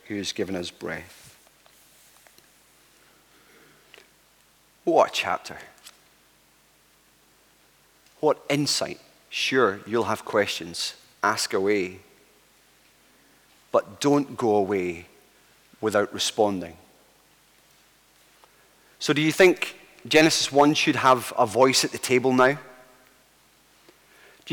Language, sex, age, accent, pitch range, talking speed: English, male, 30-49, British, 125-160 Hz, 90 wpm